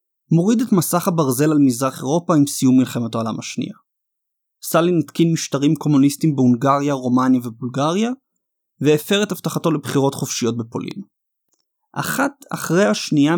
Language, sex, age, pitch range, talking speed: Hebrew, male, 30-49, 130-185 Hz, 125 wpm